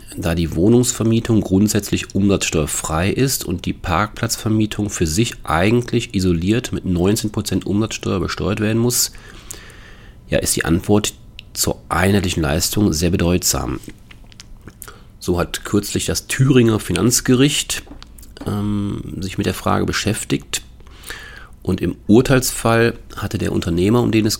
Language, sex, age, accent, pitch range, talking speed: German, male, 40-59, German, 85-110 Hz, 120 wpm